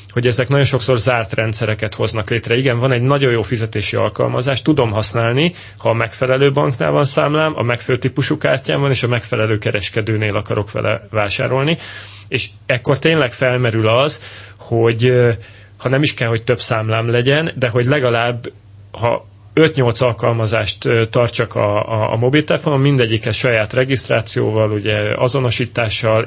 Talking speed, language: 150 wpm, Hungarian